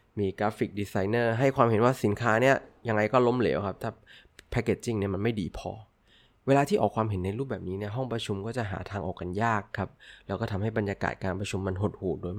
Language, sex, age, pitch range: Thai, male, 20-39, 105-135 Hz